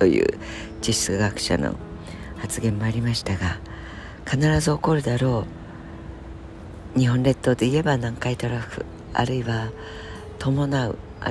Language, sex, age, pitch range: Japanese, female, 60-79, 85-120 Hz